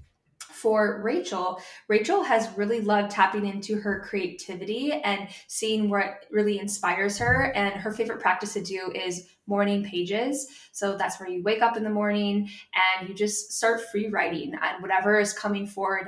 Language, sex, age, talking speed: English, female, 10-29, 170 wpm